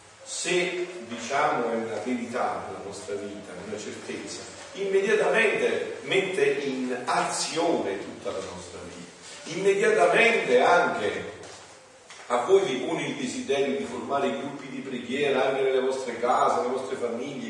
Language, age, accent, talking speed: Italian, 40-59, native, 135 wpm